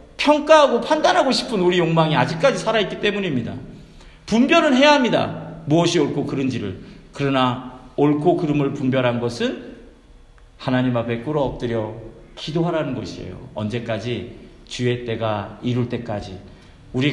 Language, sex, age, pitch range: Korean, male, 40-59, 120-185 Hz